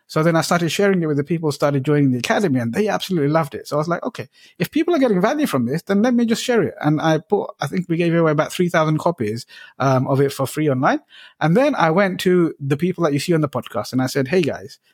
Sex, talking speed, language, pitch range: male, 290 wpm, English, 135-180 Hz